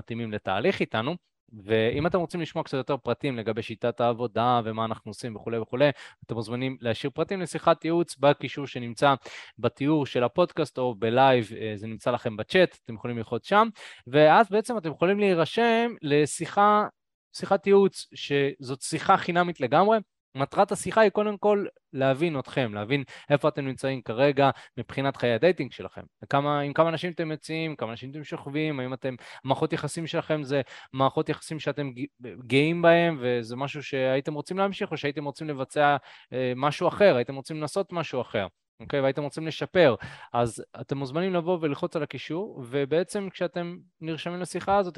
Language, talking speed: Hebrew, 165 wpm